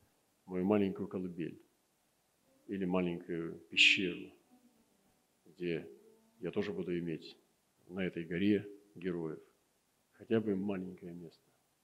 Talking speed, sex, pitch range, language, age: 95 wpm, male, 95-125 Hz, Russian, 50-69